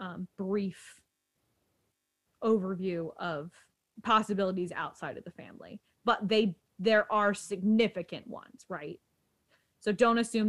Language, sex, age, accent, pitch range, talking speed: English, female, 20-39, American, 185-240 Hz, 110 wpm